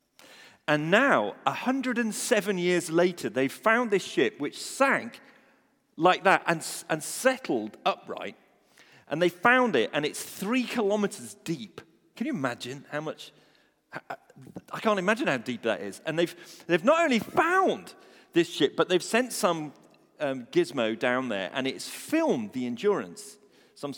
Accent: British